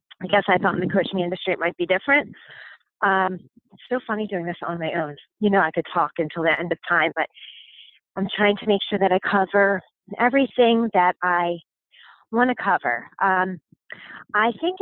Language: English